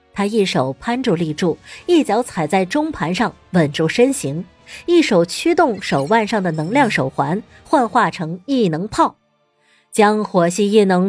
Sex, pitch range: female, 175-245 Hz